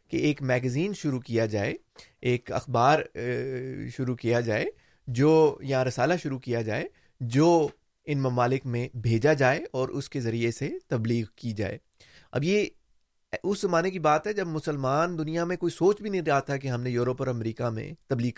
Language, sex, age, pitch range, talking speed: Urdu, male, 30-49, 115-150 Hz, 185 wpm